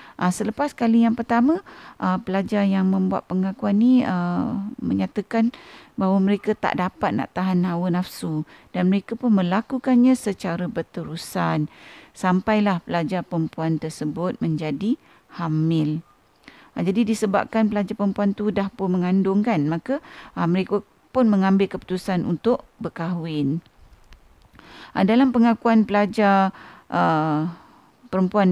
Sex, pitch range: female, 170-215 Hz